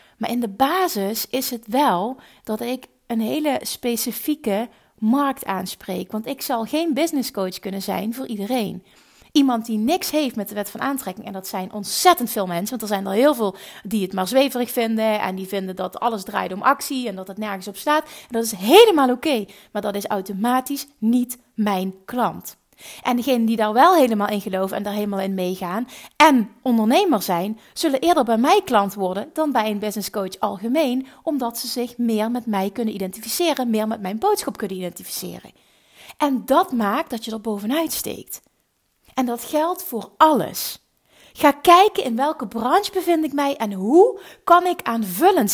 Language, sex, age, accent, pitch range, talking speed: Dutch, female, 30-49, Dutch, 210-280 Hz, 185 wpm